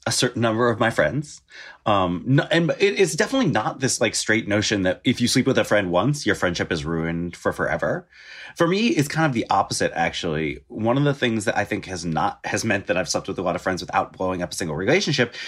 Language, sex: English, male